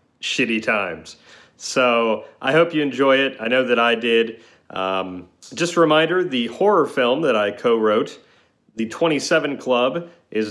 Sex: male